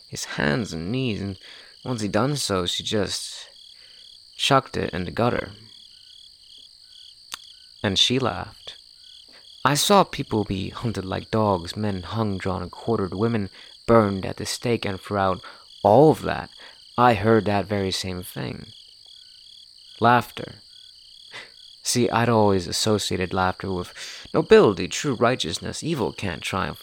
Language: English